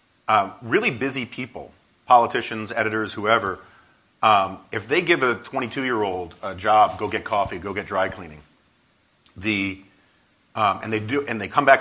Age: 40-59